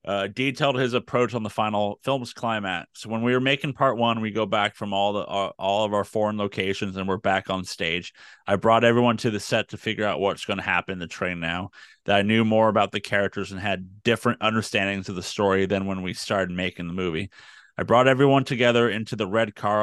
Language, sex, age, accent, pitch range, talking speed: English, male, 30-49, American, 100-115 Hz, 230 wpm